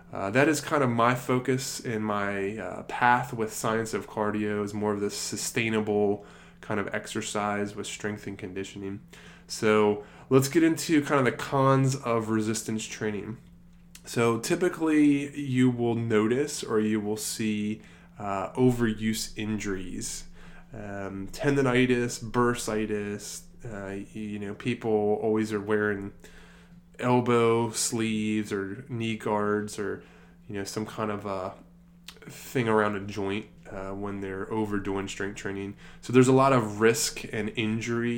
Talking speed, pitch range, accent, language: 140 wpm, 105-125 Hz, American, English